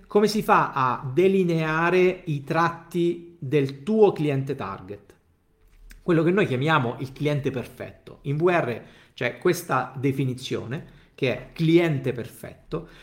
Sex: male